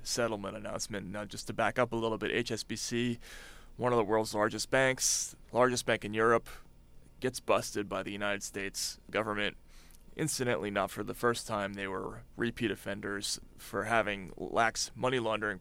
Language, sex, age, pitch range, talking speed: English, male, 30-49, 100-120 Hz, 160 wpm